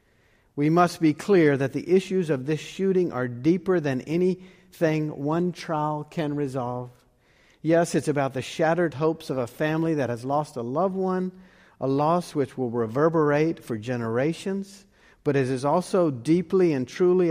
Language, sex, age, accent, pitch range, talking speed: English, male, 50-69, American, 135-180 Hz, 165 wpm